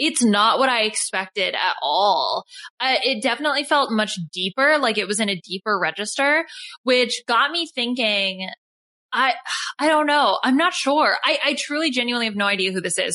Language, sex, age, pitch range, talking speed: English, female, 20-39, 200-265 Hz, 185 wpm